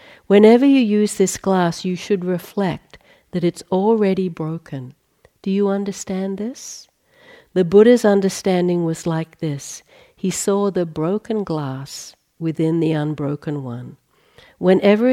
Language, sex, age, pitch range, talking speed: English, female, 60-79, 150-195 Hz, 125 wpm